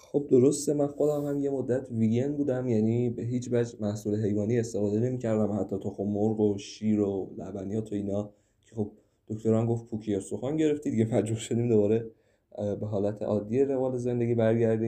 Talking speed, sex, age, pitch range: 180 wpm, male, 20-39, 105-120 Hz